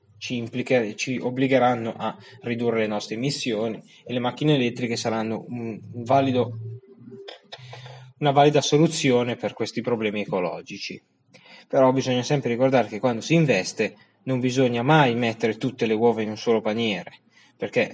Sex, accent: male, native